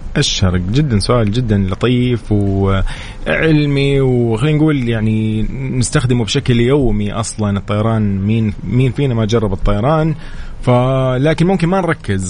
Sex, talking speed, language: male, 115 wpm, Arabic